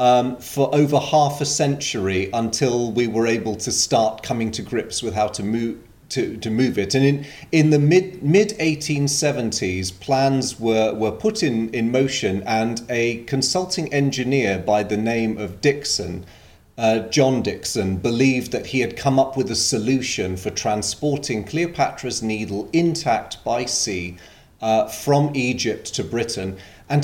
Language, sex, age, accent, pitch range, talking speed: English, male, 30-49, British, 105-145 Hz, 150 wpm